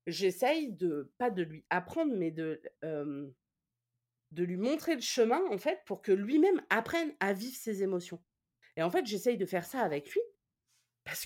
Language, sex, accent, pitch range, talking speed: French, female, French, 175-260 Hz, 180 wpm